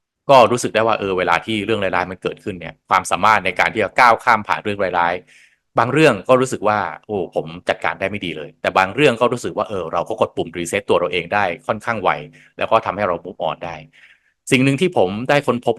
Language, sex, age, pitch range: Thai, male, 20-39, 90-120 Hz